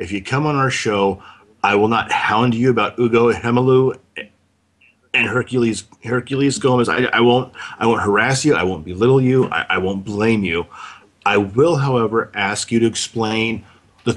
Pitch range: 100-120 Hz